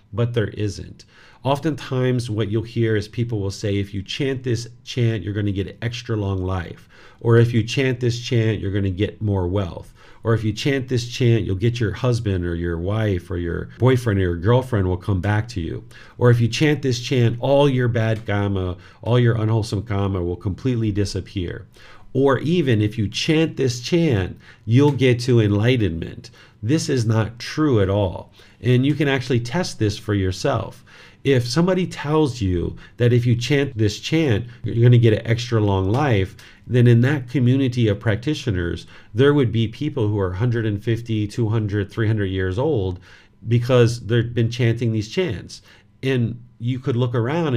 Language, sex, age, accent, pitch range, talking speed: English, male, 40-59, American, 100-125 Hz, 185 wpm